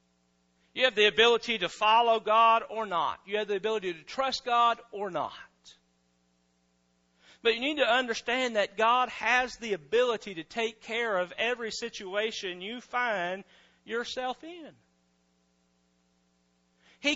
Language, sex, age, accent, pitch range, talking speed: English, male, 40-59, American, 165-245 Hz, 135 wpm